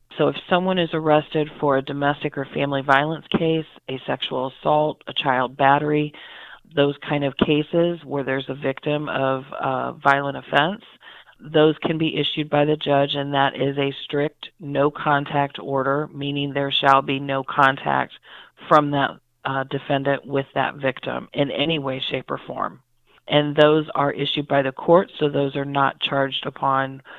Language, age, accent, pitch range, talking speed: English, 40-59, American, 140-155 Hz, 170 wpm